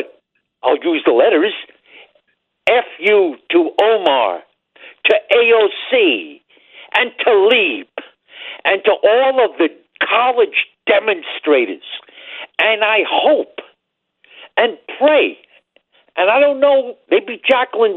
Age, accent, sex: 60-79, American, male